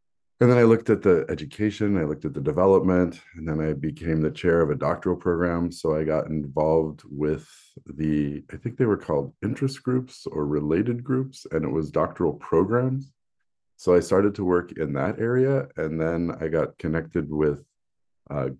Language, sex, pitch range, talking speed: English, male, 80-100 Hz, 185 wpm